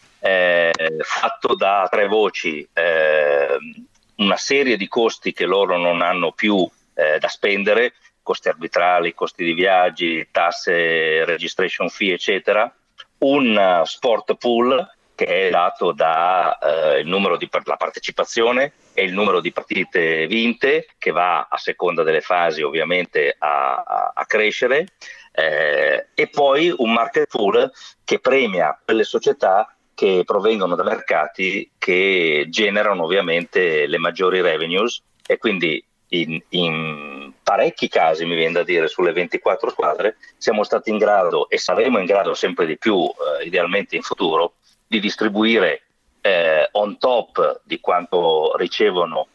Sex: male